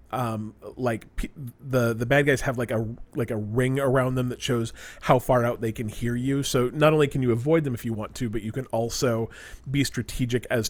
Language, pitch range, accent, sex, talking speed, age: English, 115-140 Hz, American, male, 225 wpm, 30-49